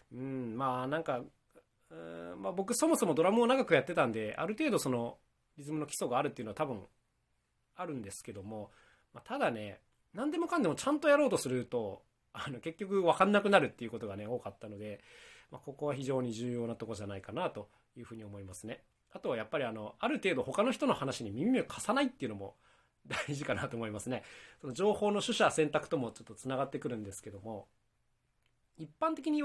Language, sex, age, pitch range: Japanese, male, 20-39, 105-150 Hz